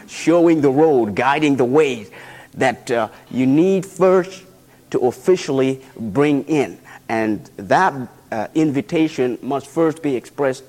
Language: English